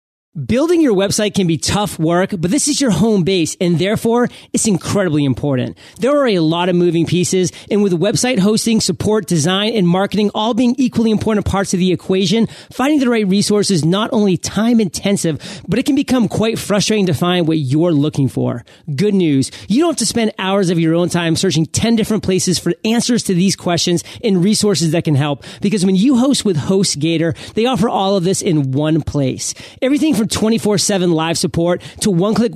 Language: English